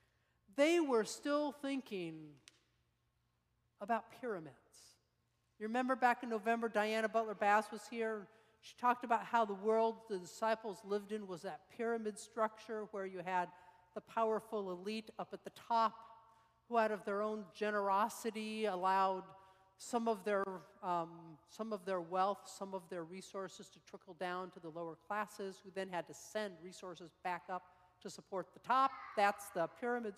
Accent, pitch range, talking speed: American, 175-220 Hz, 160 wpm